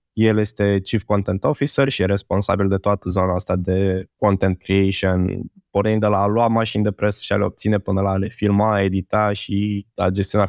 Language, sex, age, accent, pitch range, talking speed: Romanian, male, 20-39, native, 105-130 Hz, 210 wpm